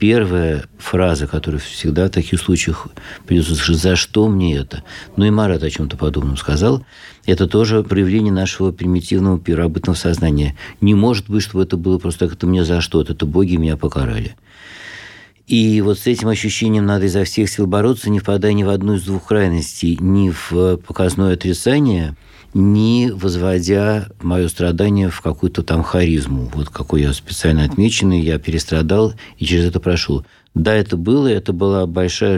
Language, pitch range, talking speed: Russian, 85-100 Hz, 165 wpm